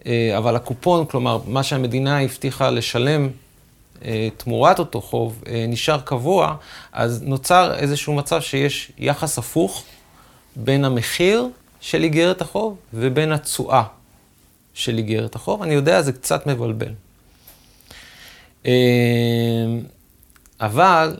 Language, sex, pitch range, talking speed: English, male, 115-150 Hz, 110 wpm